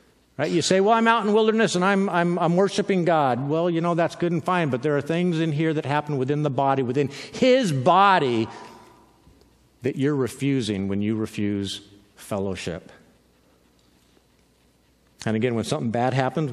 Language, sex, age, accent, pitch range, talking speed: English, male, 50-69, American, 115-185 Hz, 175 wpm